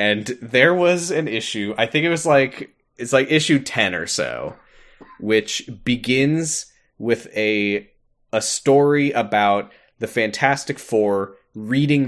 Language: English